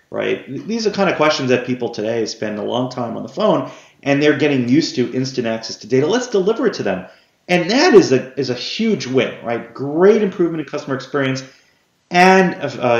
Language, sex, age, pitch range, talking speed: English, male, 30-49, 115-140 Hz, 215 wpm